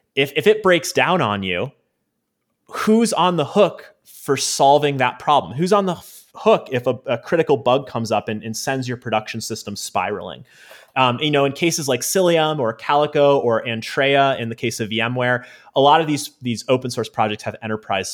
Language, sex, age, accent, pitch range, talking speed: English, male, 30-49, American, 110-140 Hz, 200 wpm